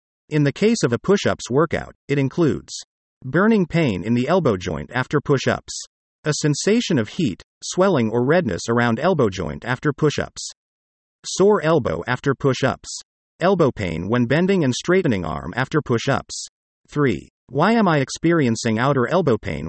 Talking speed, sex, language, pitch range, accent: 150 wpm, male, English, 115-165 Hz, American